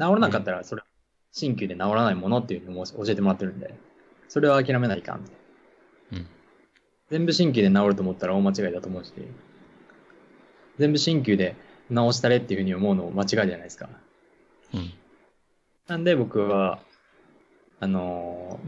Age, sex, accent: 20-39, male, native